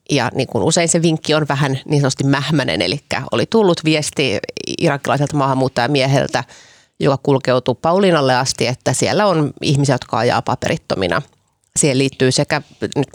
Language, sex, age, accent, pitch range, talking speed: Finnish, female, 30-49, native, 130-155 Hz, 140 wpm